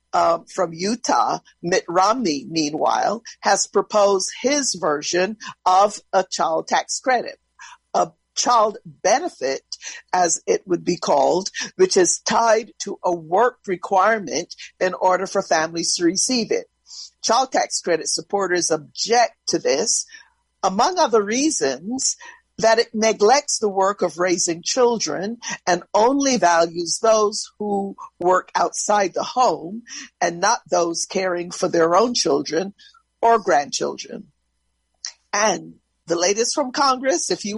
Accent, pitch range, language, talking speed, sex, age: American, 180-270 Hz, English, 130 wpm, female, 50-69